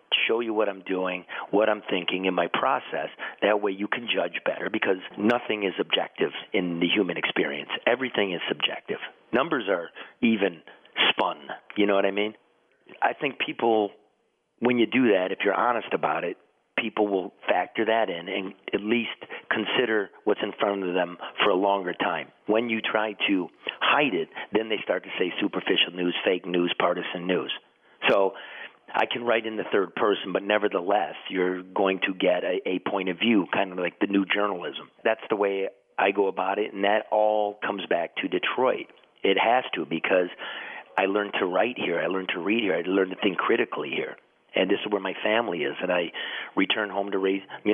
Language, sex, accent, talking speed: English, male, American, 195 wpm